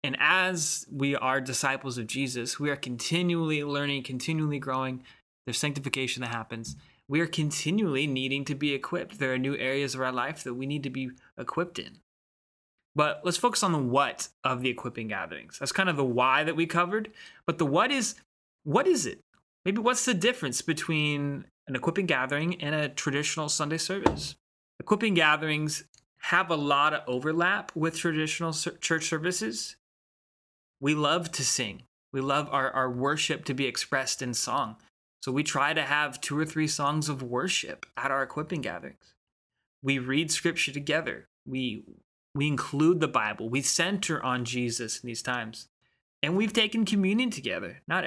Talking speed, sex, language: 170 wpm, male, English